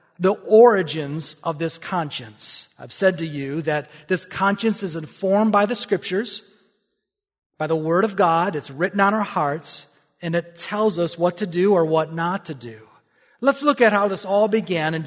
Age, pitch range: 40-59, 150-195 Hz